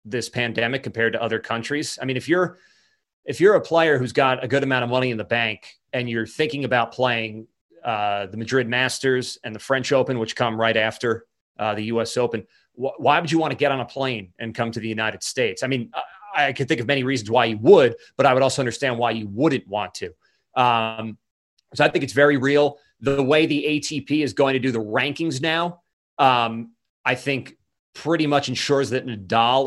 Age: 30-49